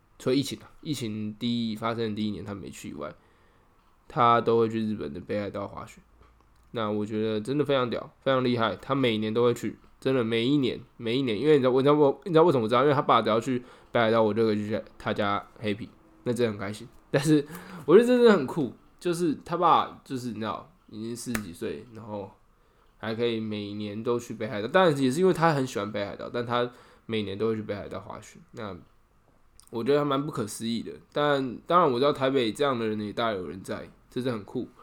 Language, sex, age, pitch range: Chinese, male, 10-29, 105-125 Hz